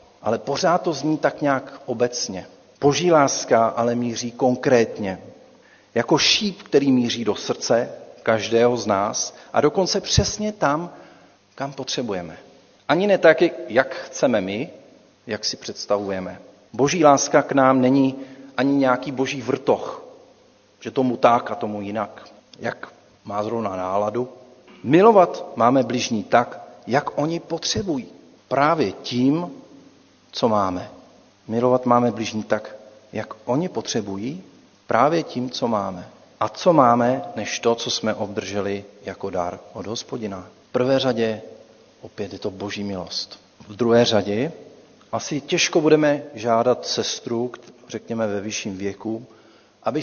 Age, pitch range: 40-59, 110-135 Hz